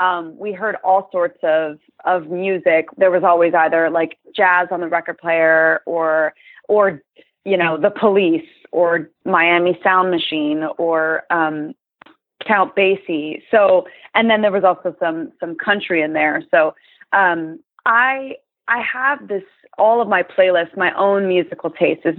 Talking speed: 155 wpm